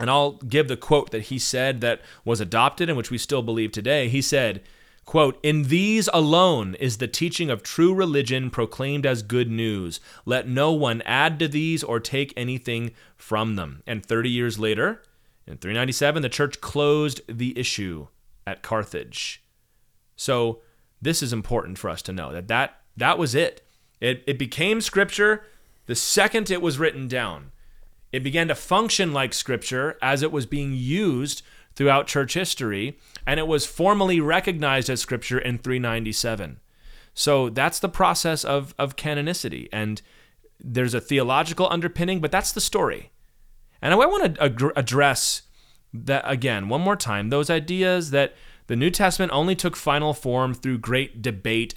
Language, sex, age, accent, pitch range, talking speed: English, male, 30-49, American, 115-155 Hz, 165 wpm